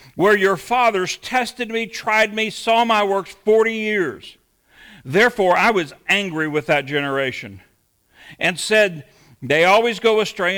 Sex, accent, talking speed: male, American, 140 wpm